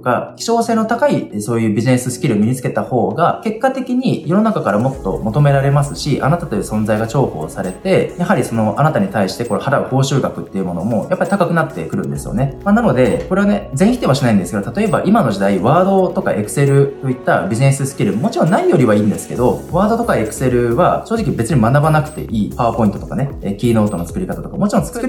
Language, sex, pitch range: Japanese, male, 120-190 Hz